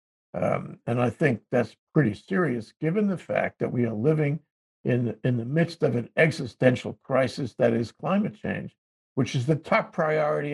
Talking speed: 175 wpm